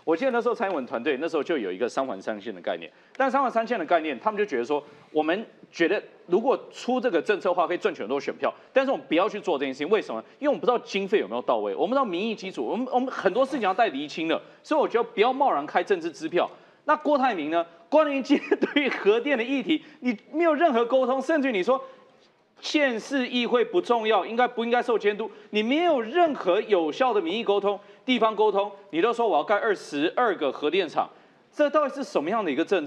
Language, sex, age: Chinese, male, 30-49